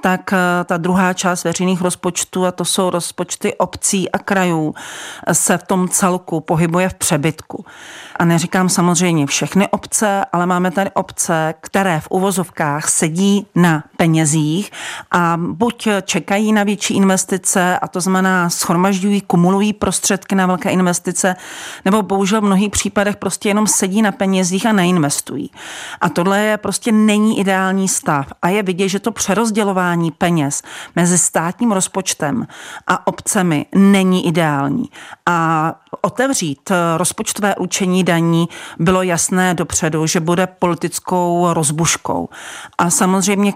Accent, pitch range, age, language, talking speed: native, 165-195 Hz, 40-59, Czech, 135 wpm